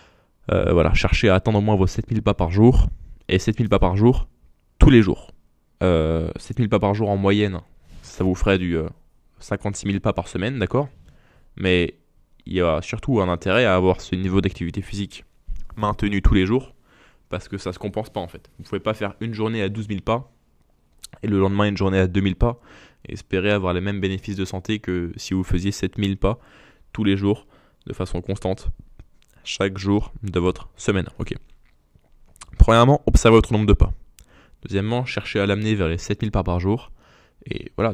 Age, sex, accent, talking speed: 20-39, male, French, 200 wpm